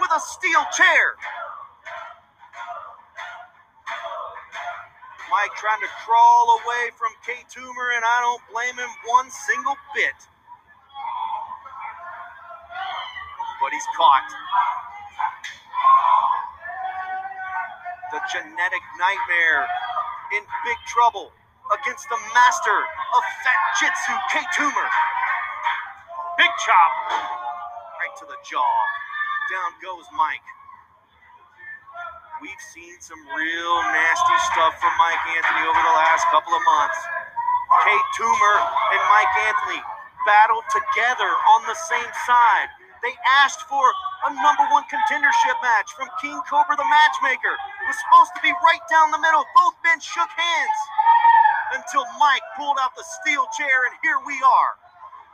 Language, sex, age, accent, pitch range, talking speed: English, male, 40-59, American, 285-460 Hz, 115 wpm